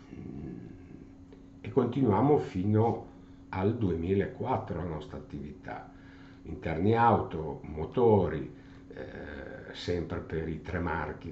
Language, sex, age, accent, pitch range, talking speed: Italian, male, 60-79, native, 80-100 Hz, 90 wpm